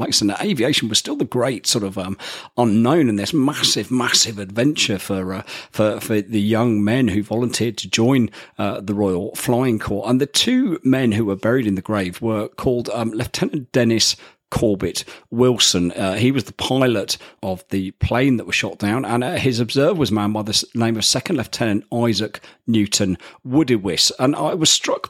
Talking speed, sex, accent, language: 190 wpm, male, British, English